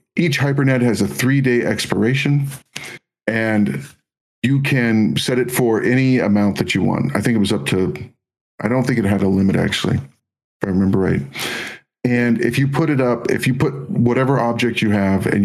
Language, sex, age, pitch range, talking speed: English, male, 50-69, 105-125 Hz, 190 wpm